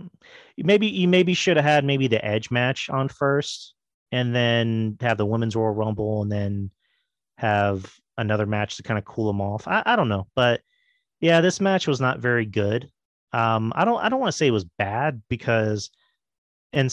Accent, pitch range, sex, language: American, 105-130 Hz, male, English